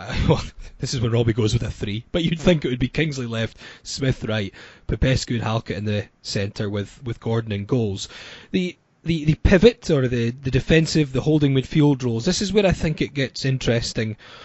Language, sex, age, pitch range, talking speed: English, male, 20-39, 115-150 Hz, 210 wpm